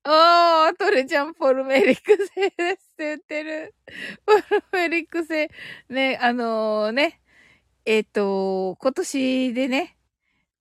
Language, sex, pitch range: Japanese, female, 200-275 Hz